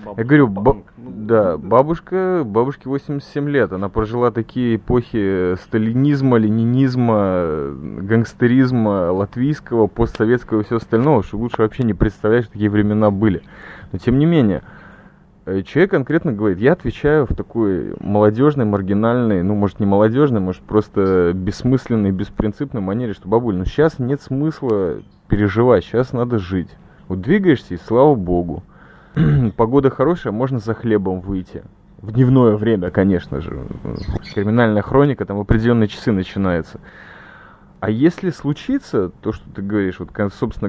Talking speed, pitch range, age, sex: 135 wpm, 100-130 Hz, 20-39, male